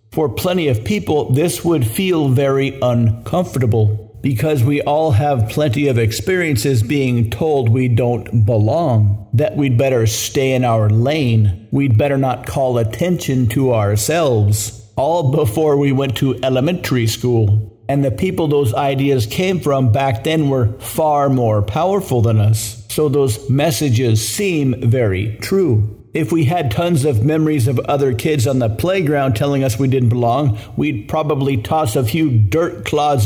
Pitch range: 115-145 Hz